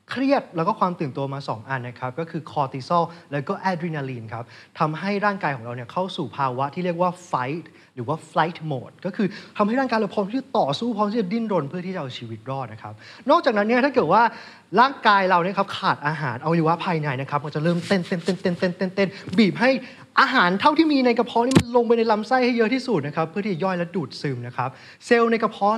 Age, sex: 20-39, male